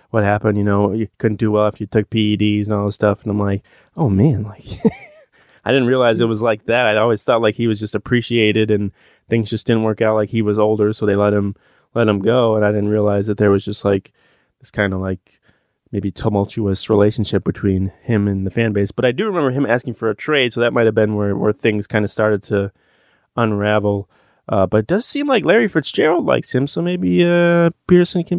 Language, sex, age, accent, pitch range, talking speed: English, male, 20-39, American, 105-130 Hz, 240 wpm